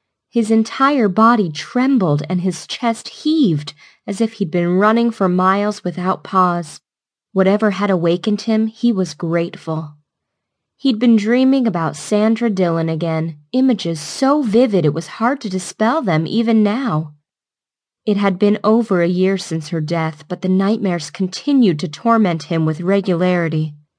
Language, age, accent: English, 10-29, American